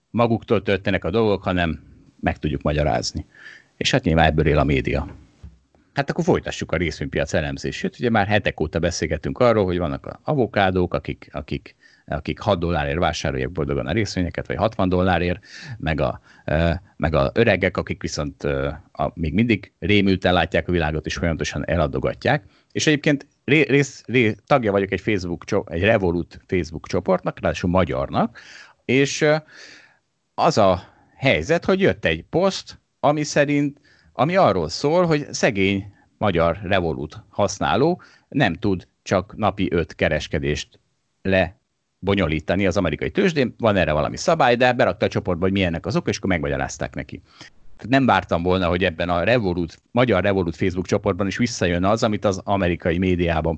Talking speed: 155 wpm